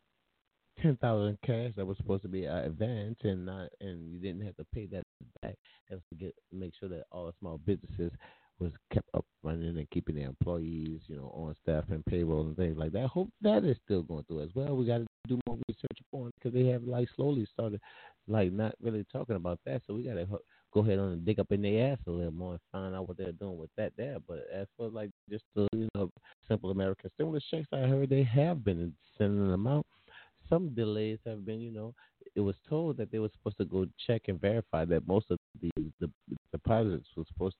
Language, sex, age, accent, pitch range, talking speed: English, male, 30-49, American, 85-110 Hz, 235 wpm